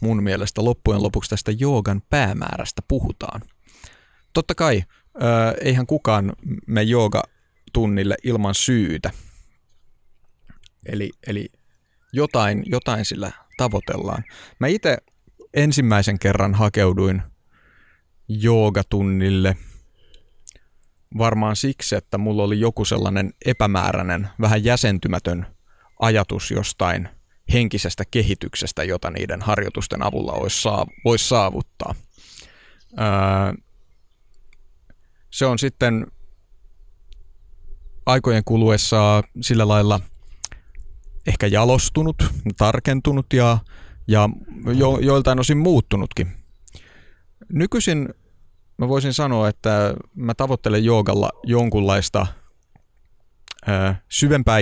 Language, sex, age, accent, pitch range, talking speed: Finnish, male, 30-49, native, 95-120 Hz, 80 wpm